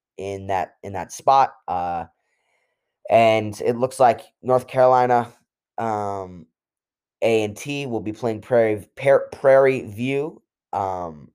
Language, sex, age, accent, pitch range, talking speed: English, male, 10-29, American, 110-140 Hz, 120 wpm